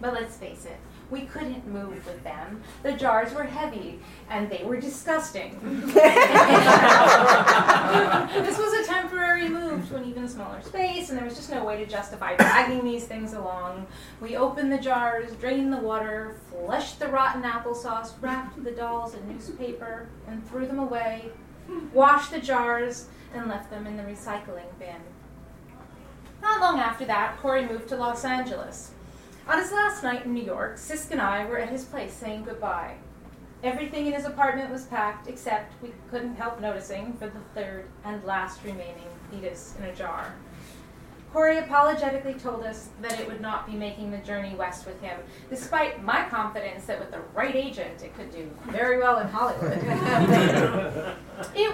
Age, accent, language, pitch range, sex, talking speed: 30-49, American, English, 210-270 Hz, female, 170 wpm